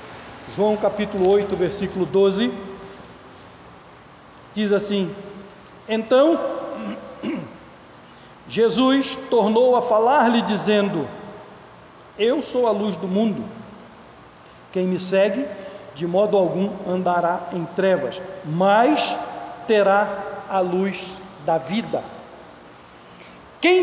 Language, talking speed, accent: Portuguese, 90 wpm, Brazilian